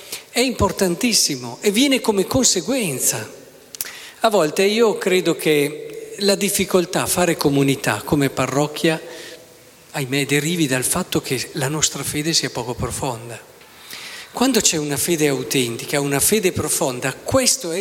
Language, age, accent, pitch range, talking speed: Italian, 40-59, native, 145-205 Hz, 130 wpm